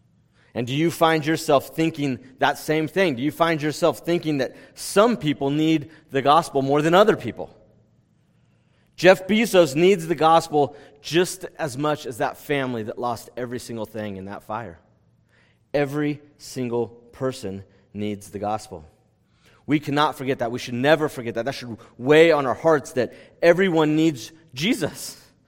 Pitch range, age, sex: 130-175 Hz, 30-49, male